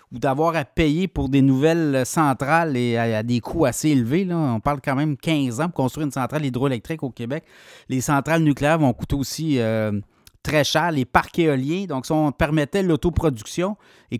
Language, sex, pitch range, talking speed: French, male, 125-160 Hz, 195 wpm